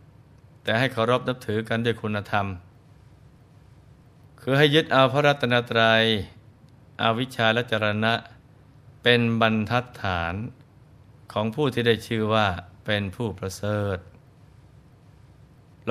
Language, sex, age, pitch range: Thai, male, 20-39, 110-125 Hz